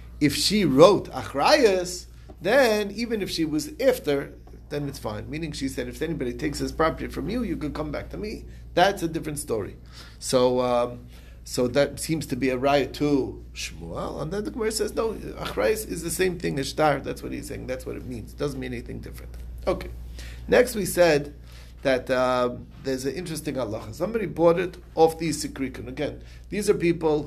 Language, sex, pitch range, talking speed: English, male, 120-165 Hz, 200 wpm